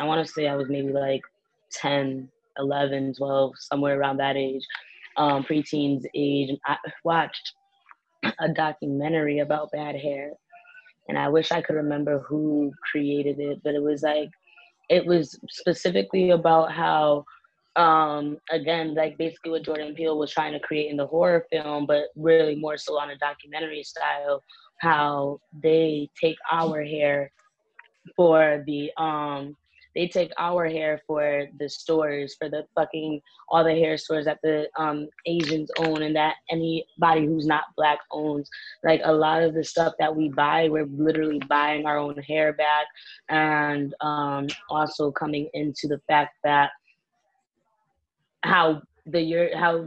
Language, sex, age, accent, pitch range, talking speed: English, female, 20-39, American, 145-160 Hz, 150 wpm